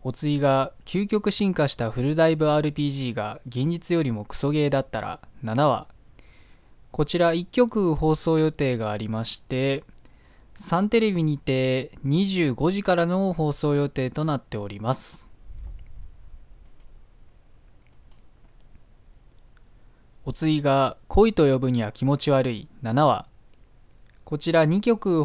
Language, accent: Japanese, native